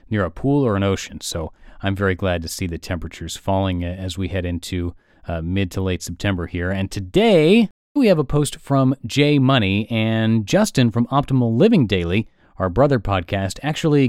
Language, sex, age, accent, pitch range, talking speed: English, male, 30-49, American, 95-145 Hz, 185 wpm